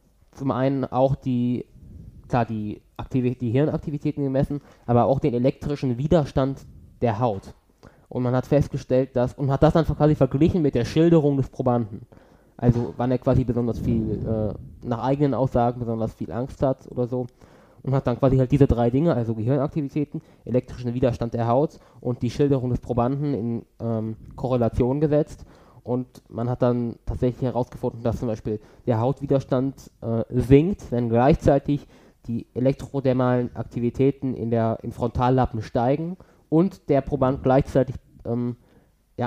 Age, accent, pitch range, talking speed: 20-39, German, 120-135 Hz, 155 wpm